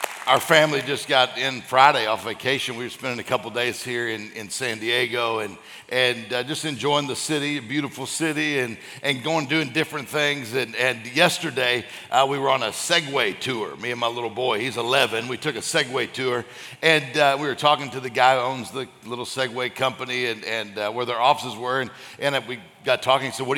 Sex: male